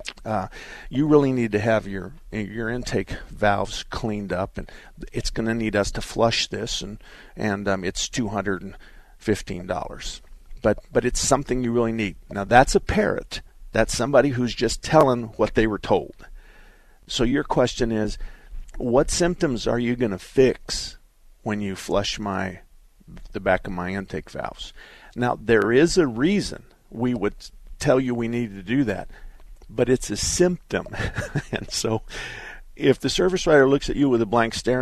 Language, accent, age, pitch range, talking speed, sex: English, American, 50-69, 100-130 Hz, 175 wpm, male